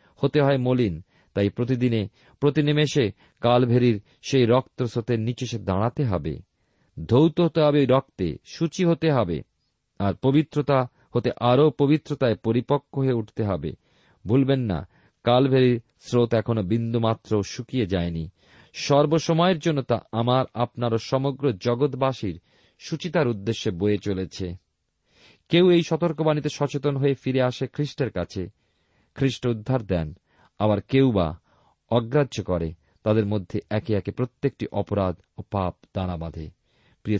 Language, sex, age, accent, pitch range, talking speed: Bengali, male, 40-59, native, 95-130 Hz, 120 wpm